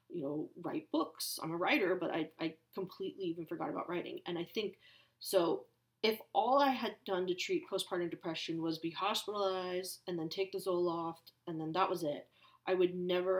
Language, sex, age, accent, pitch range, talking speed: English, female, 30-49, American, 160-190 Hz, 195 wpm